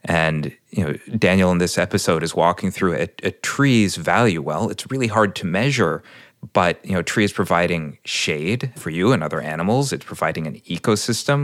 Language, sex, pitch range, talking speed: English, male, 90-120 Hz, 195 wpm